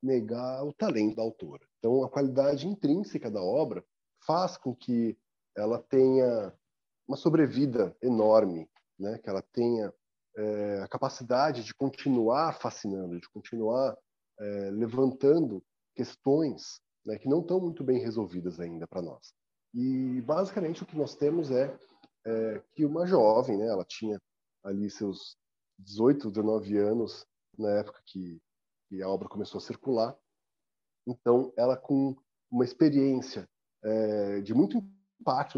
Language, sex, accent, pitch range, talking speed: Portuguese, male, Brazilian, 105-140 Hz, 135 wpm